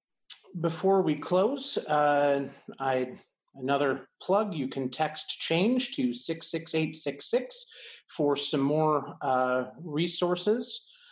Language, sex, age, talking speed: English, male, 30-49, 95 wpm